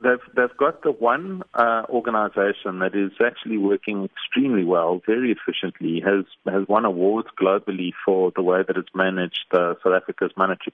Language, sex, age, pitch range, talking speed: English, male, 40-59, 95-110 Hz, 170 wpm